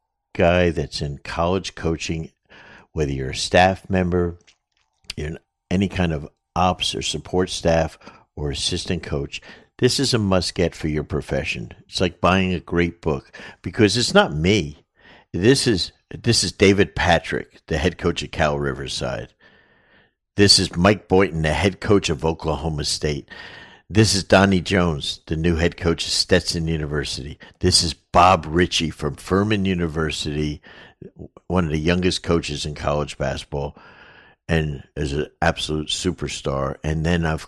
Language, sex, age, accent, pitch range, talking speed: English, male, 50-69, American, 75-95 Hz, 155 wpm